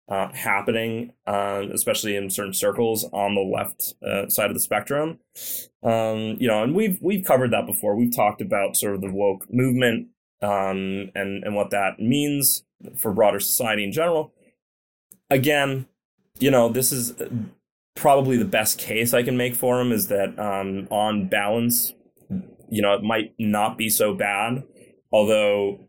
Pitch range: 100-125 Hz